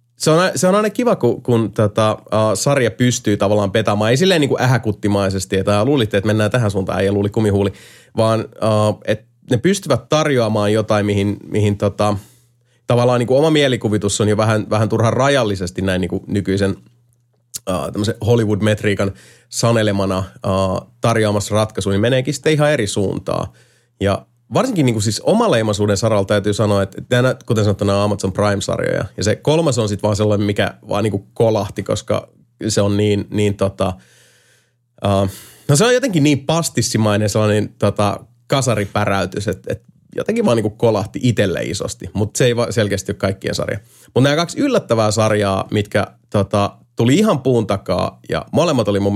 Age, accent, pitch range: 30-49, native, 100-120 Hz